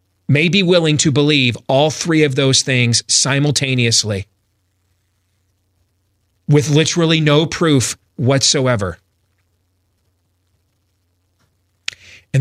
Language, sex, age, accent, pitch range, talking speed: English, male, 40-59, American, 95-155 Hz, 80 wpm